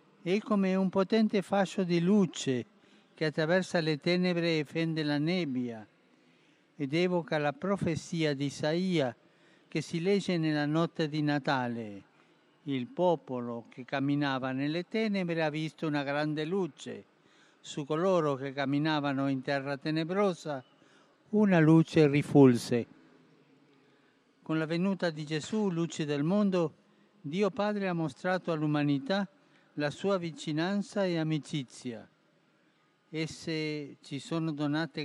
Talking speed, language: 120 wpm, Italian